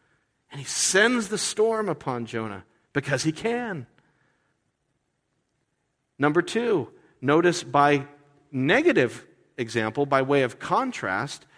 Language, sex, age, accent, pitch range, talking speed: English, male, 50-69, American, 110-155 Hz, 105 wpm